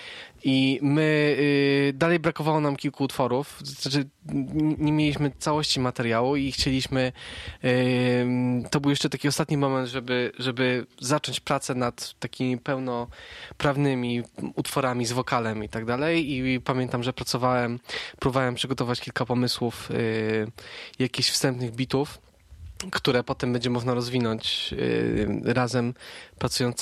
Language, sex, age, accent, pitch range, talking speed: Polish, male, 20-39, native, 120-145 Hz, 125 wpm